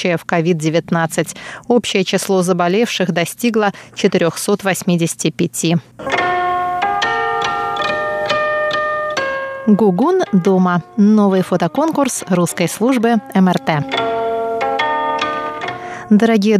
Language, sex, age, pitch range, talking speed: Russian, female, 20-39, 180-235 Hz, 55 wpm